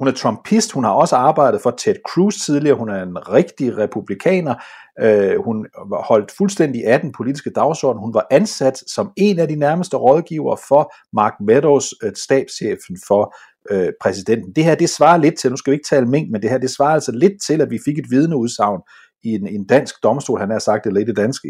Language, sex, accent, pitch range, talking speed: Danish, male, native, 110-165 Hz, 205 wpm